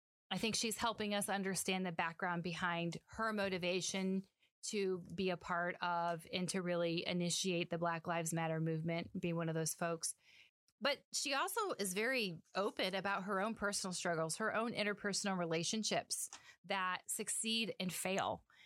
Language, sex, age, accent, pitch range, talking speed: English, female, 30-49, American, 175-200 Hz, 160 wpm